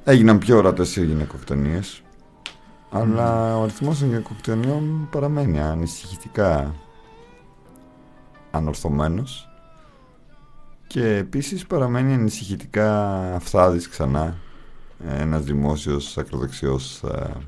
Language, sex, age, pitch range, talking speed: Greek, male, 50-69, 65-95 Hz, 75 wpm